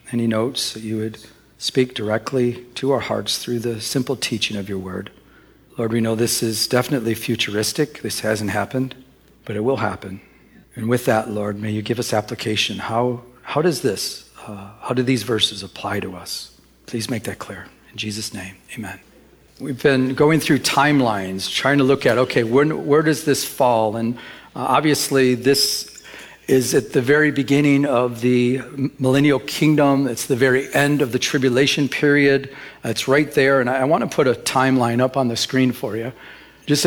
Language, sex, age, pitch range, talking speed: English, male, 40-59, 115-145 Hz, 185 wpm